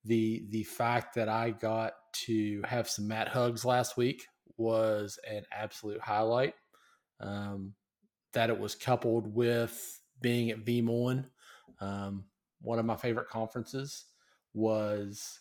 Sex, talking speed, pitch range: male, 130 wpm, 105-120 Hz